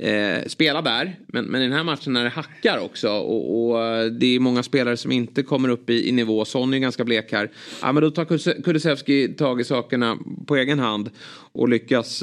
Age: 30-49